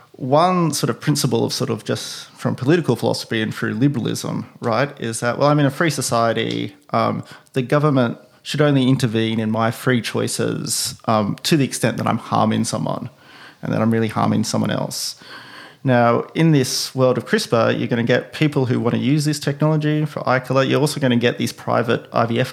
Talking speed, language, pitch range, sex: 200 wpm, English, 120-145 Hz, male